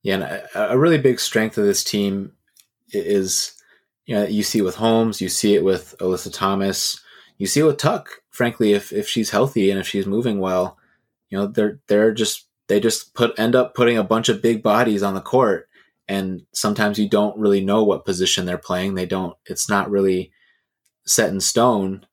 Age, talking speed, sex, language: 20-39, 200 wpm, male, English